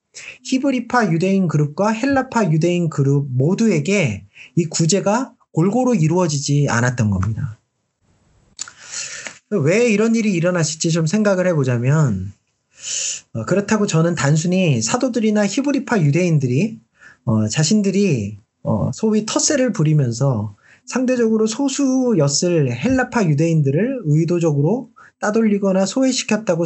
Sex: male